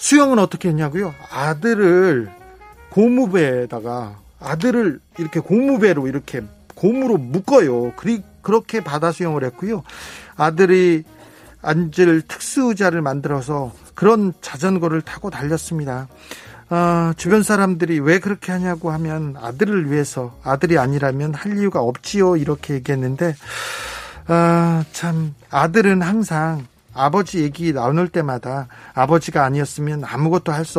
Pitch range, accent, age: 145-185 Hz, native, 40-59